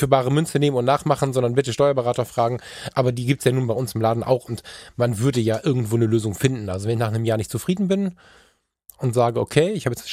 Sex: male